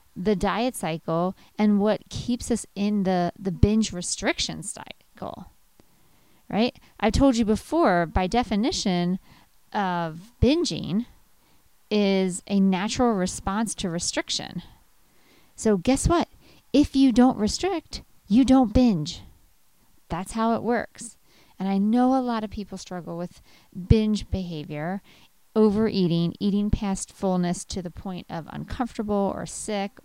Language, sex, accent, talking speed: English, female, American, 130 wpm